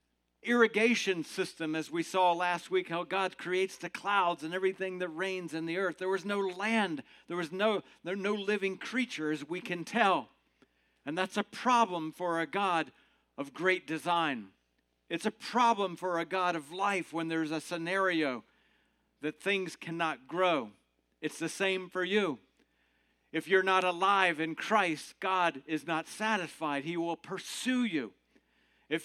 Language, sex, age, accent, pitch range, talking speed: English, male, 50-69, American, 170-210 Hz, 160 wpm